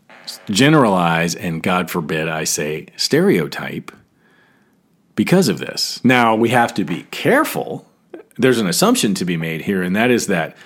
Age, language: 40-59, English